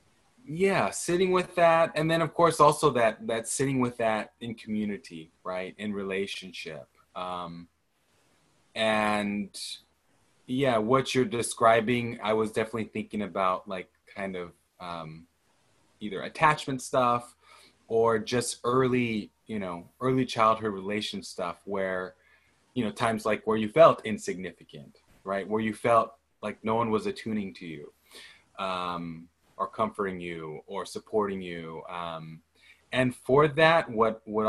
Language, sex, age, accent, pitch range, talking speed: English, male, 20-39, American, 95-115 Hz, 135 wpm